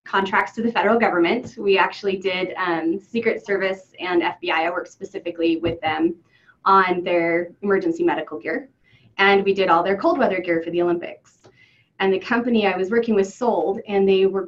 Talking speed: 185 wpm